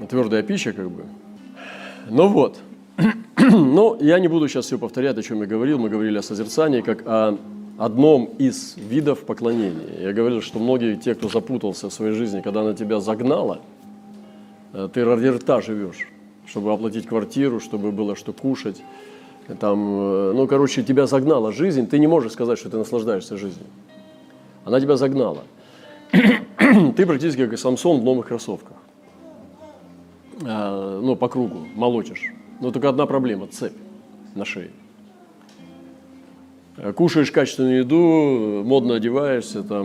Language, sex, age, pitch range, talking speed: Russian, male, 40-59, 105-140 Hz, 140 wpm